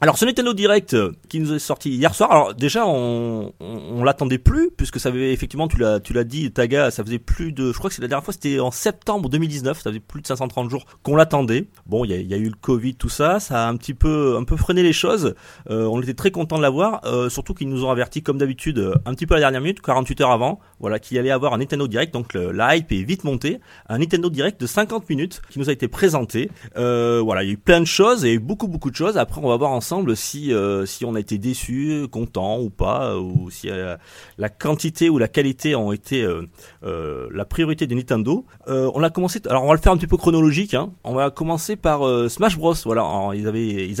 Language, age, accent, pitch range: French, 30-49, French, 115-155 Hz